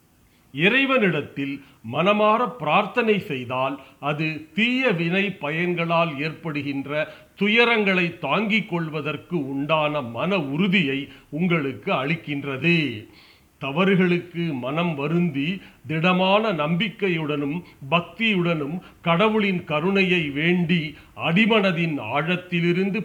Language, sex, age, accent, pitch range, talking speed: Tamil, male, 40-59, native, 145-195 Hz, 70 wpm